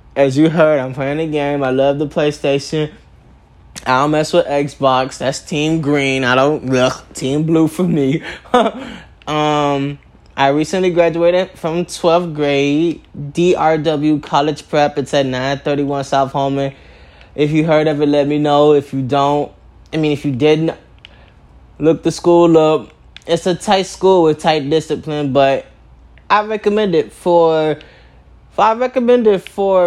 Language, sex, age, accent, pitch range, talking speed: English, male, 10-29, American, 140-170 Hz, 155 wpm